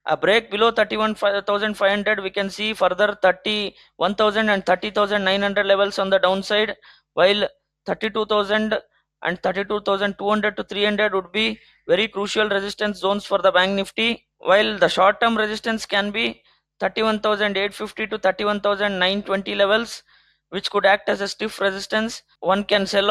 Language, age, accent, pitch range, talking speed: English, 20-39, Indian, 190-215 Hz, 135 wpm